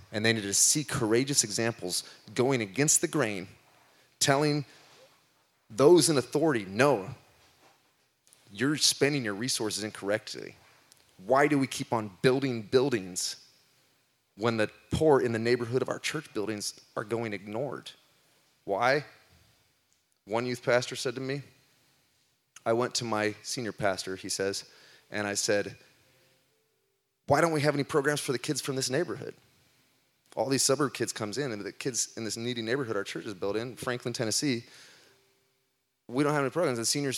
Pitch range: 105-130 Hz